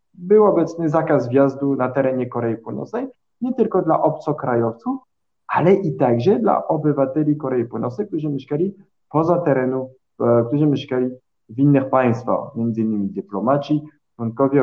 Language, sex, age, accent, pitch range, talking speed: Polish, male, 20-39, native, 130-190 Hz, 125 wpm